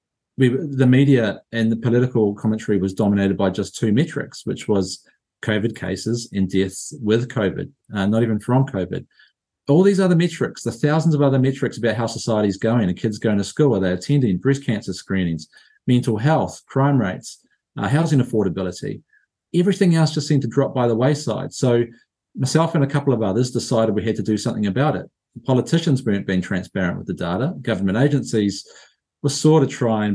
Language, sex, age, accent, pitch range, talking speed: English, male, 40-59, Australian, 105-130 Hz, 190 wpm